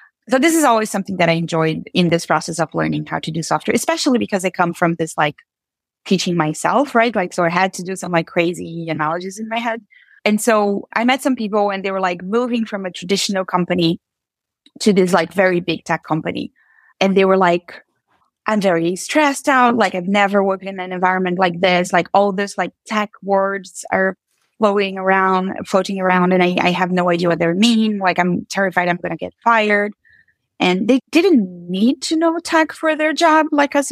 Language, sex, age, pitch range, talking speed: English, female, 20-39, 175-230 Hz, 210 wpm